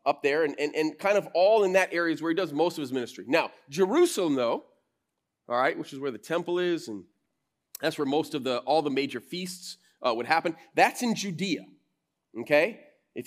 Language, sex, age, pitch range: English, male, 30-49, 140-185 Hz